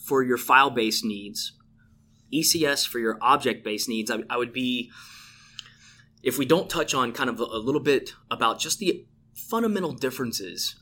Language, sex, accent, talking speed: English, male, American, 160 wpm